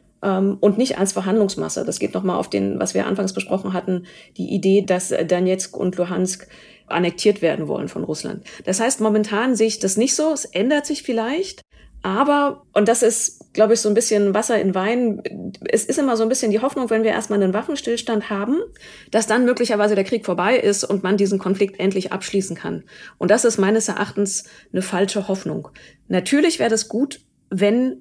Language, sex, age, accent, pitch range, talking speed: German, female, 30-49, German, 195-235 Hz, 195 wpm